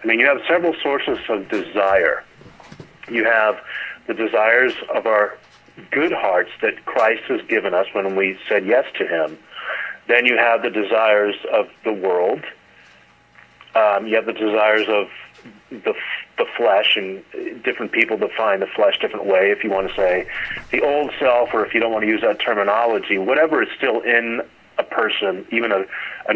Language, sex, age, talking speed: English, male, 40-59, 180 wpm